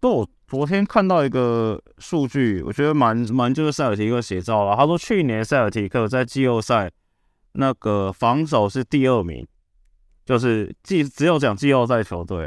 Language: Chinese